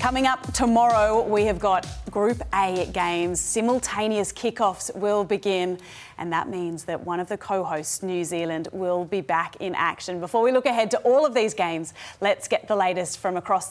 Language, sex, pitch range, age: English, female, 210-265 Hz, 30-49